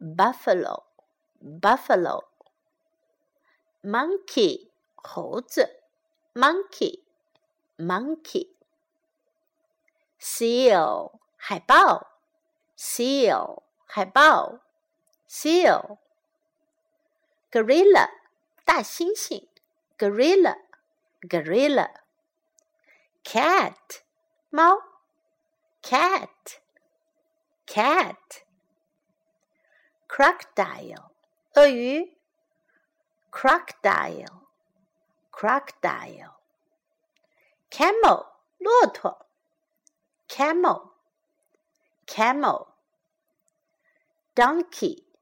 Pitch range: 305-325 Hz